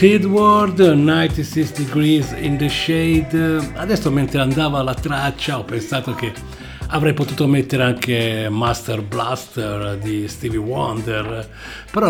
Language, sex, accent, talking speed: English, male, Italian, 125 wpm